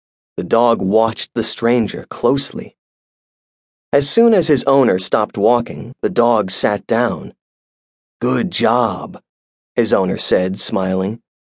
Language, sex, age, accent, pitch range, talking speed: English, male, 30-49, American, 85-140 Hz, 120 wpm